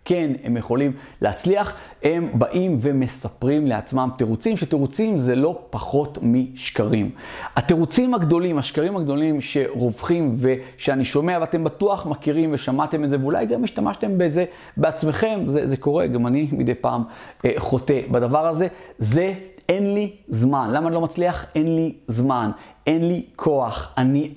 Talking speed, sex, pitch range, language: 145 wpm, male, 125-170 Hz, Hebrew